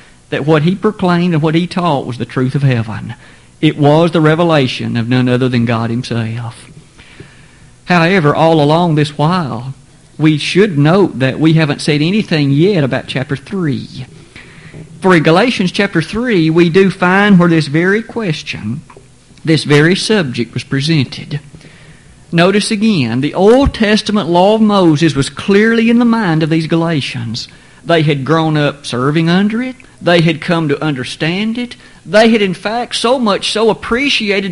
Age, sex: 50-69, male